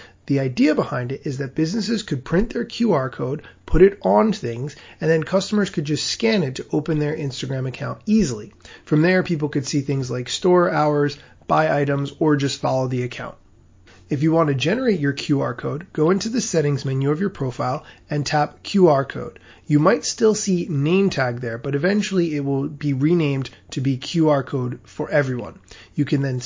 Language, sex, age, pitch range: English, male, 30-49, 135-175 Hz